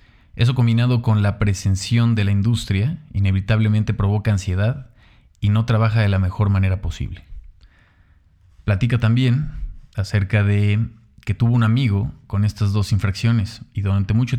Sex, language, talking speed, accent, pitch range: male, Spanish, 140 wpm, Mexican, 95-115 Hz